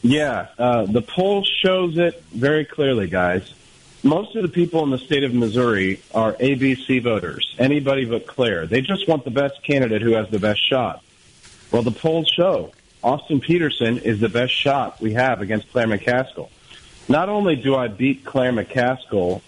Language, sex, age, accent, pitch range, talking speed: English, male, 40-59, American, 110-145 Hz, 175 wpm